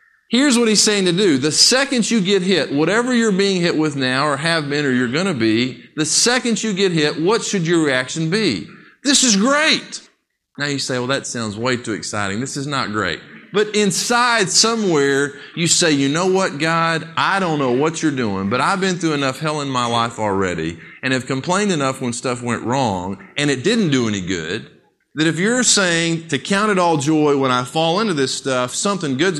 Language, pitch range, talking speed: English, 120-185 Hz, 220 wpm